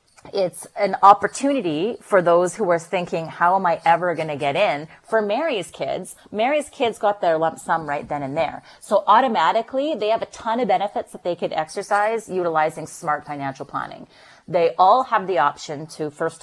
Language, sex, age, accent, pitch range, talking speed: English, female, 30-49, American, 155-205 Hz, 190 wpm